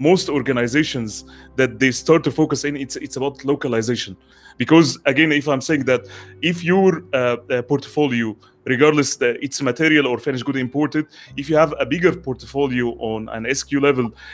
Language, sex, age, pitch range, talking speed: English, male, 30-49, 125-155 Hz, 165 wpm